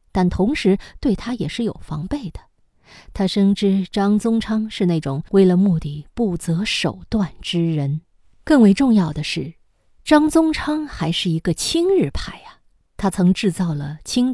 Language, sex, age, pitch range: Chinese, female, 20-39, 165-245 Hz